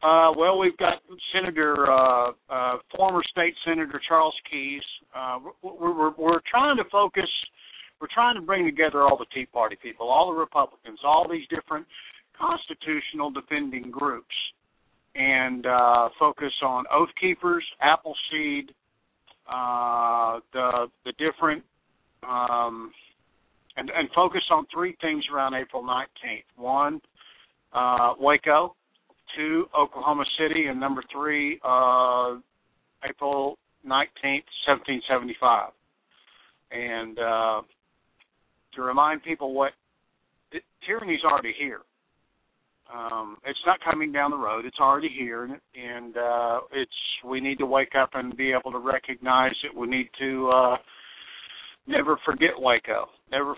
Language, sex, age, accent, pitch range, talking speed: English, male, 50-69, American, 125-155 Hz, 130 wpm